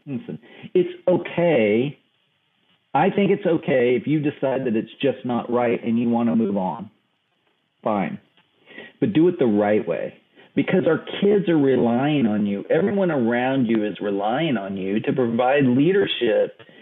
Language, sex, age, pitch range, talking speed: English, male, 40-59, 110-150 Hz, 155 wpm